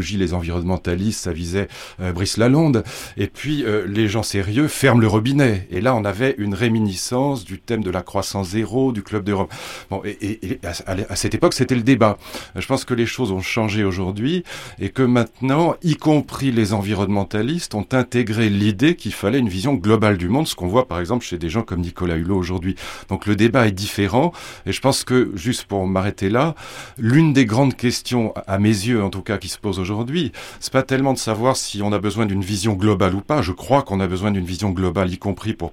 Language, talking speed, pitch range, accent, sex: French, 220 wpm, 95-120 Hz, French, male